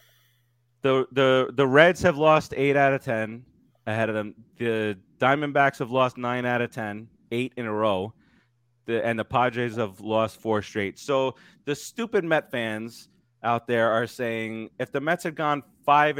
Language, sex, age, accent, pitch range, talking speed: English, male, 30-49, American, 110-135 Hz, 180 wpm